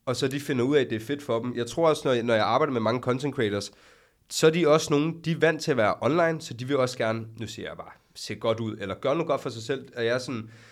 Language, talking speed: Danish, 325 wpm